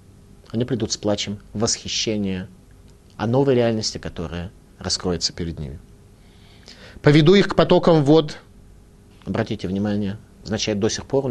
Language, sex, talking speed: Russian, male, 125 wpm